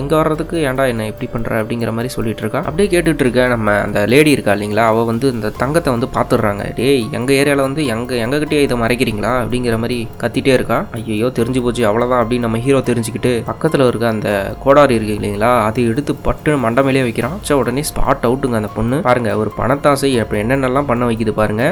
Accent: Indian